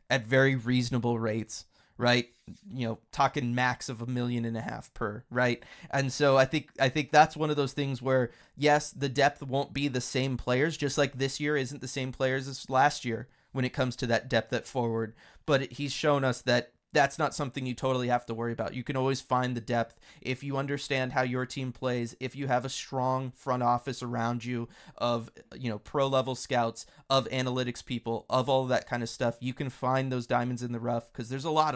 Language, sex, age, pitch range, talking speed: English, male, 30-49, 120-135 Hz, 225 wpm